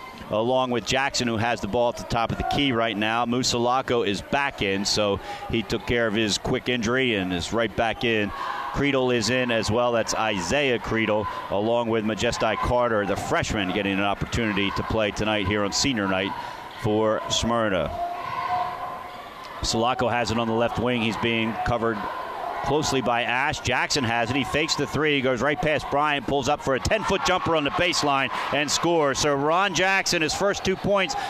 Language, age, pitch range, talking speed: English, 40-59, 115-190 Hz, 195 wpm